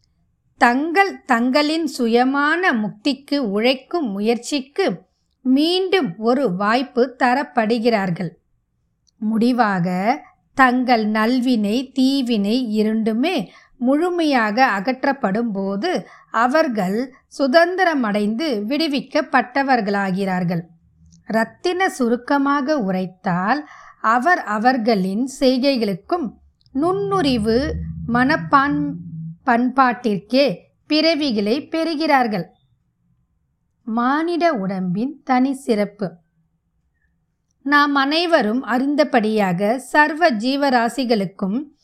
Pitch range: 205-280 Hz